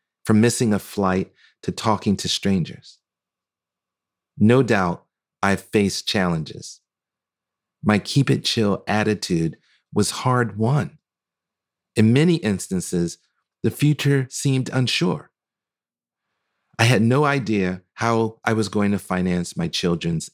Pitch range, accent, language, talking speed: 90-115 Hz, American, English, 120 wpm